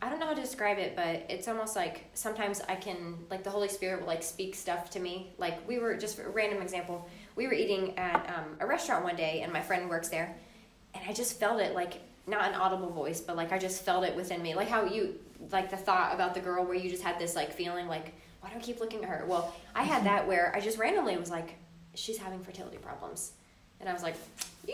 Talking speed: 260 wpm